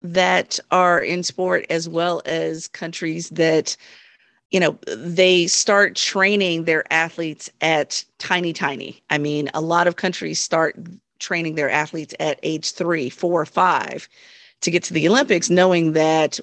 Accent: American